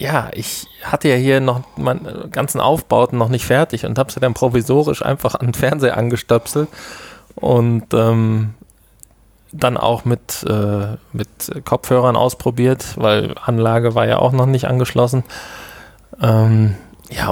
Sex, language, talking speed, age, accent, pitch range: male, German, 145 wpm, 20-39, German, 100-120 Hz